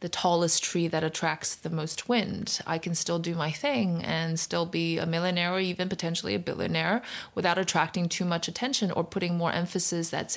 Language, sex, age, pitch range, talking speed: English, female, 20-39, 170-220 Hz, 195 wpm